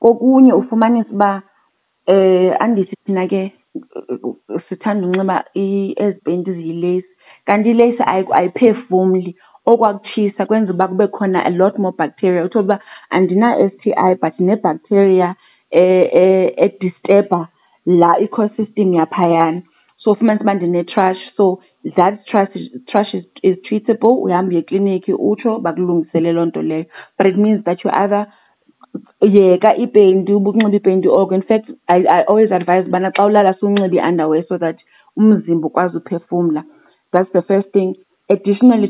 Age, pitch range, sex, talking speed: 30-49, 175-205 Hz, female, 100 wpm